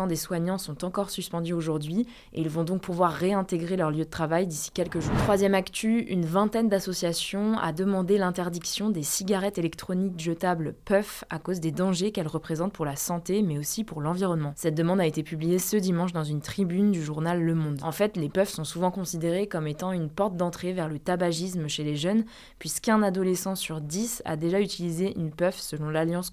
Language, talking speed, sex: French, 200 wpm, female